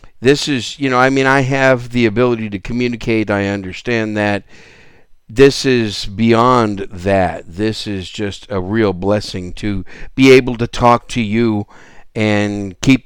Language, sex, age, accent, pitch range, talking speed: English, male, 50-69, American, 100-130 Hz, 155 wpm